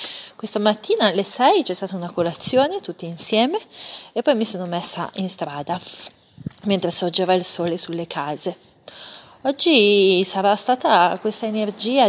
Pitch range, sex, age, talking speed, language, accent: 185-230 Hz, female, 30-49, 140 wpm, Italian, native